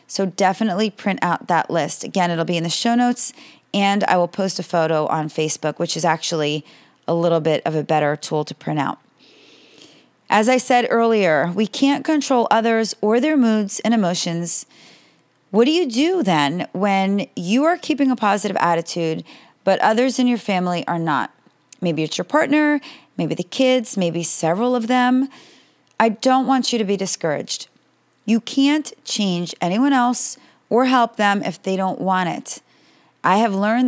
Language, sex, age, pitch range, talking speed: English, female, 30-49, 180-245 Hz, 175 wpm